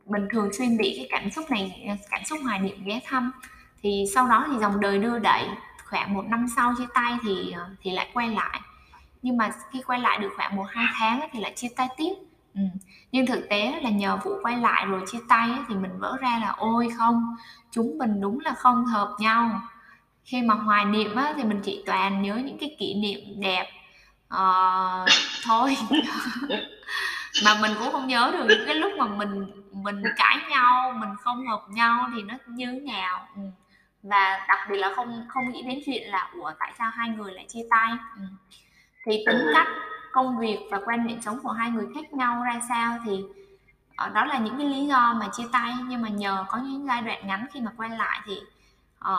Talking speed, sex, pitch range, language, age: 210 wpm, female, 205-250 Hz, Vietnamese, 10-29